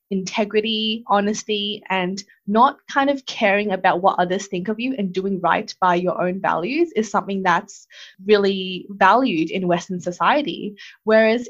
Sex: female